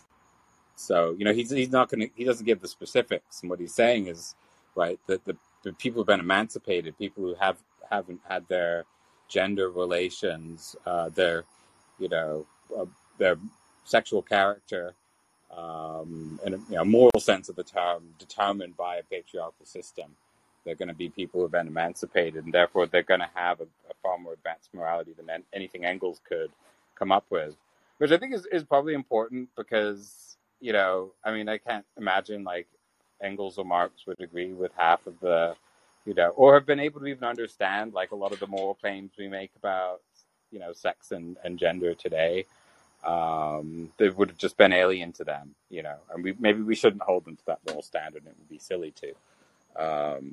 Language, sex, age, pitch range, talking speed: English, male, 30-49, 85-110 Hz, 195 wpm